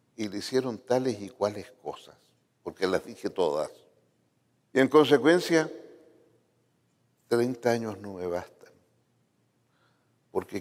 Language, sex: Spanish, male